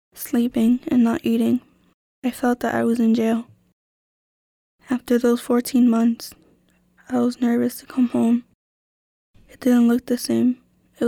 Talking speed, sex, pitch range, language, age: 145 wpm, female, 225-250 Hz, English, 10-29